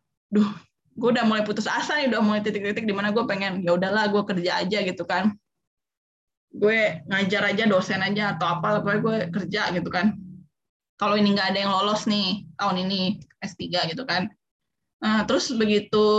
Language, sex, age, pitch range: Indonesian, female, 10-29, 195-250 Hz